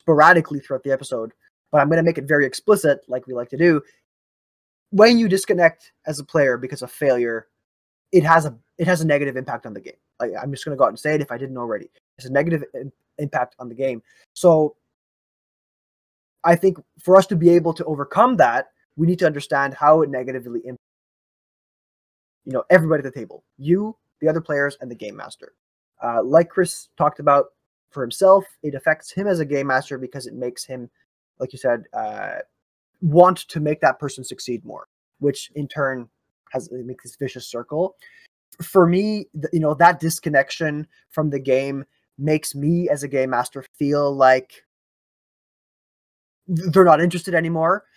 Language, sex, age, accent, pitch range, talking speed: English, male, 20-39, American, 135-165 Hz, 190 wpm